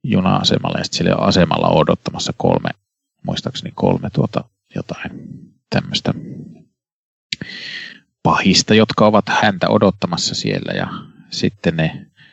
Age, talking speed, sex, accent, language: 30-49, 105 wpm, male, native, Finnish